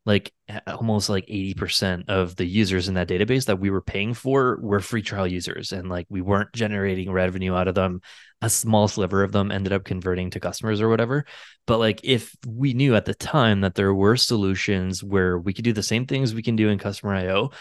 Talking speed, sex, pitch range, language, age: 220 wpm, male, 95-110 Hz, English, 20-39